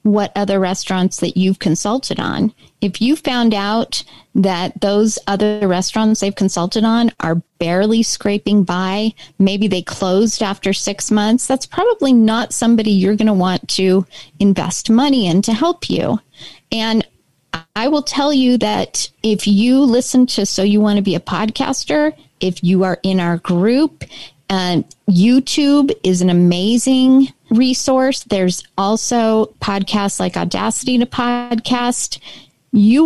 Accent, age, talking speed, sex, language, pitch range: American, 40-59, 145 wpm, female, English, 190-240 Hz